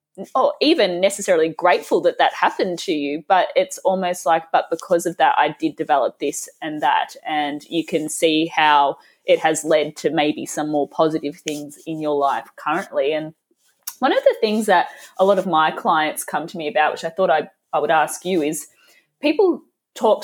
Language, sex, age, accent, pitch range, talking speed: English, female, 20-39, Australian, 160-245 Hz, 200 wpm